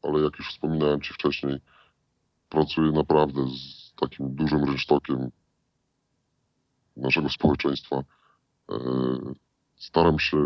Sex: female